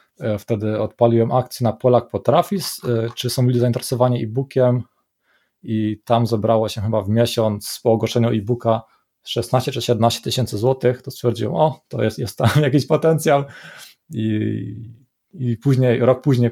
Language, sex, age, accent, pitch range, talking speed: Polish, male, 20-39, native, 110-125 Hz, 150 wpm